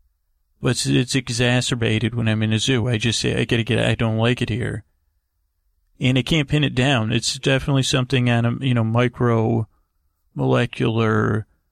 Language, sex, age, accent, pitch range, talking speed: English, male, 40-59, American, 110-135 Hz, 170 wpm